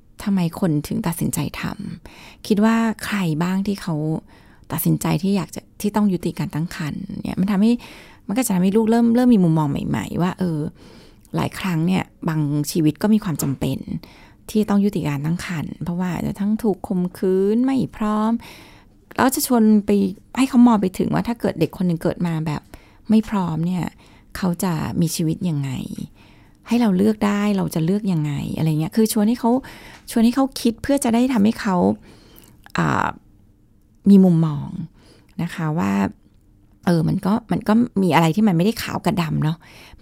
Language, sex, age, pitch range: Thai, female, 20-39, 160-220 Hz